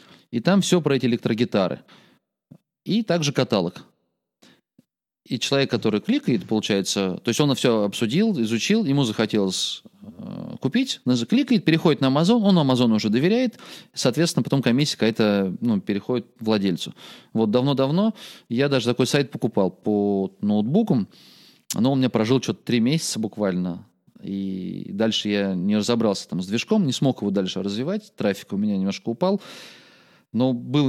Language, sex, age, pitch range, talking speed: Russian, male, 30-49, 110-155 Hz, 150 wpm